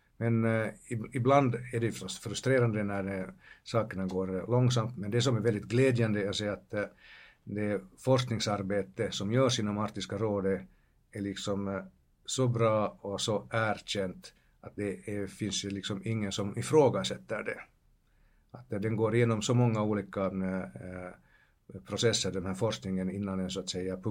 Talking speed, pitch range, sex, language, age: 135 wpm, 95-115 Hz, male, Finnish, 60-79